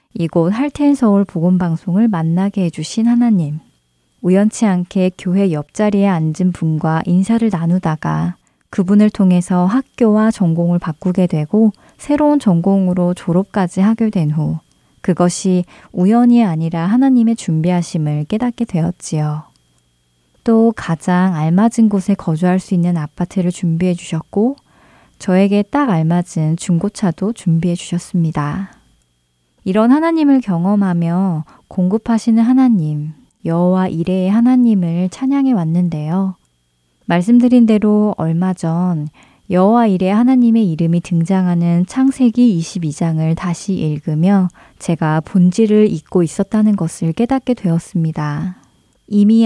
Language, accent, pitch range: Korean, native, 165-215 Hz